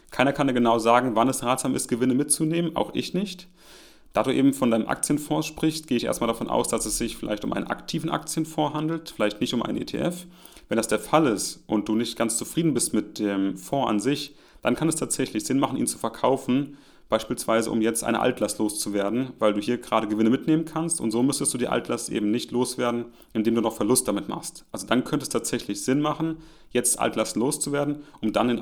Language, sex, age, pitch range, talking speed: German, male, 30-49, 110-145 Hz, 220 wpm